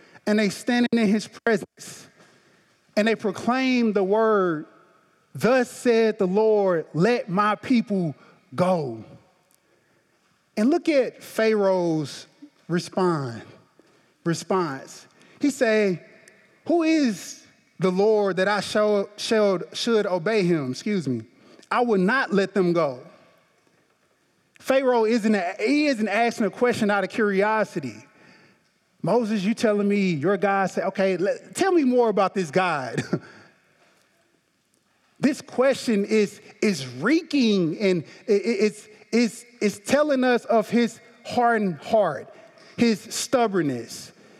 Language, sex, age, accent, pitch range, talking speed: English, male, 20-39, American, 185-235 Hz, 120 wpm